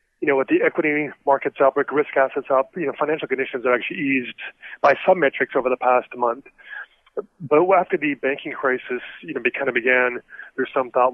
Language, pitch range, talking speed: English, 125-145 Hz, 210 wpm